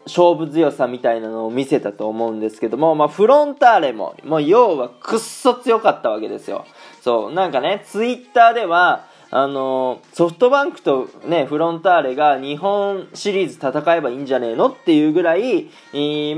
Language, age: Japanese, 20-39